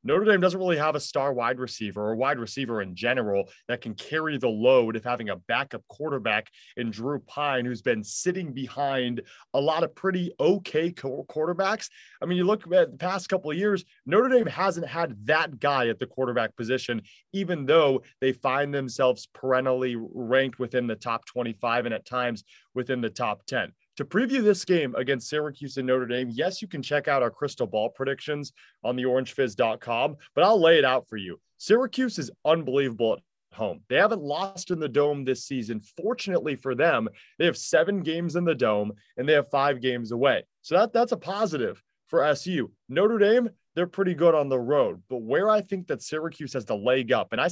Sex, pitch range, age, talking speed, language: male, 125-175 Hz, 30-49, 200 wpm, English